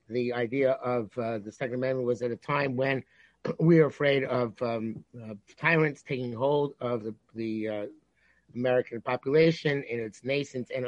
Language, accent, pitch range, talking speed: English, American, 125-150 Hz, 170 wpm